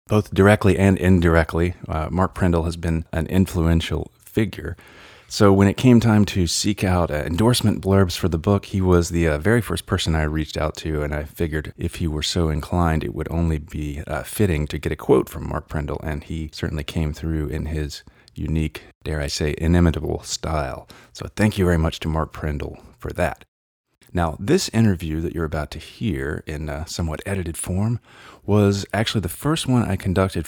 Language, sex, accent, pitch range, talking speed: English, male, American, 80-100 Hz, 200 wpm